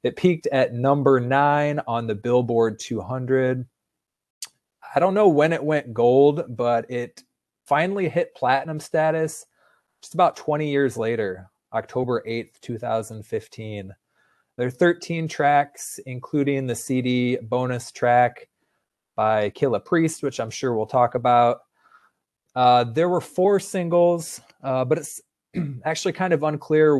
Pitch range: 115-145 Hz